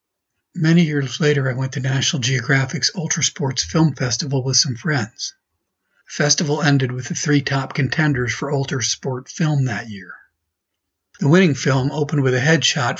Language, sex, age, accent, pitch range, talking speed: English, male, 50-69, American, 120-140 Hz, 165 wpm